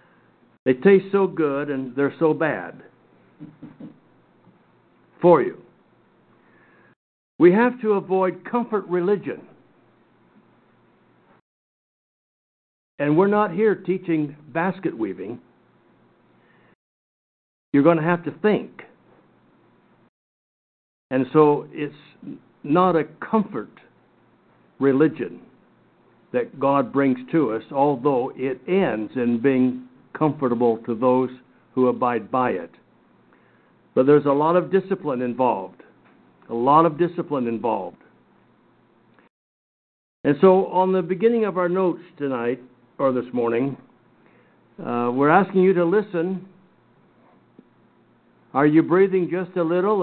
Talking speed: 105 wpm